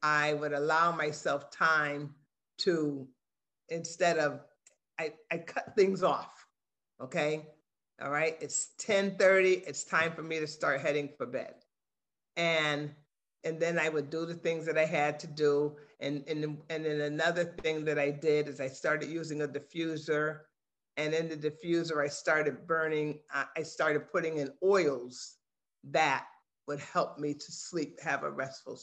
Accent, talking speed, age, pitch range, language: American, 160 wpm, 50-69, 145-170 Hz, English